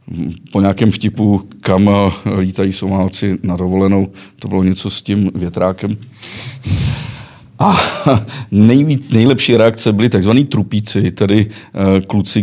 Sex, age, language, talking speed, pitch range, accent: male, 50-69, Czech, 105 wpm, 95-115 Hz, native